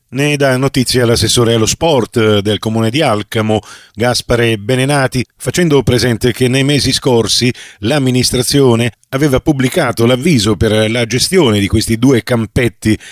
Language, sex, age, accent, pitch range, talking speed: Italian, male, 40-59, native, 115-155 Hz, 135 wpm